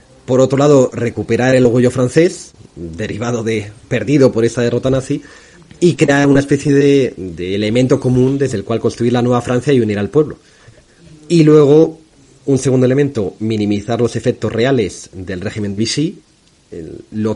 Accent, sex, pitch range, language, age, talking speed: Spanish, male, 100-130 Hz, Spanish, 30-49, 160 wpm